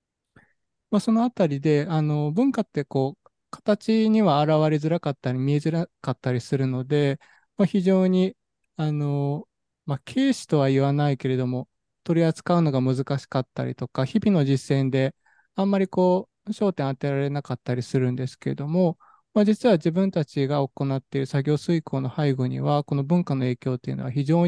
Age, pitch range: 20-39, 135-185 Hz